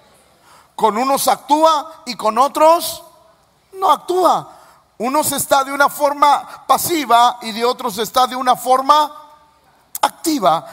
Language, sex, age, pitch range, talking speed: Spanish, male, 50-69, 220-290 Hz, 125 wpm